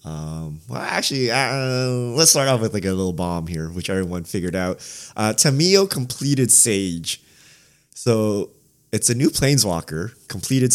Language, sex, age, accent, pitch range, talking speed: English, male, 20-39, American, 100-135 Hz, 150 wpm